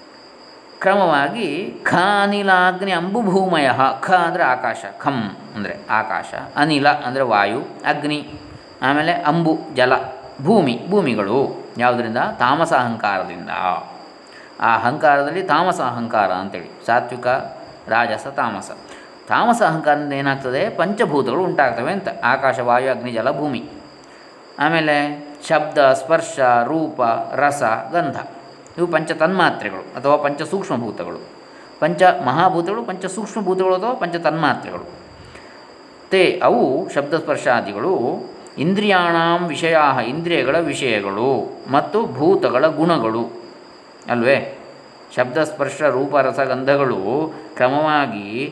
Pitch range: 135-170 Hz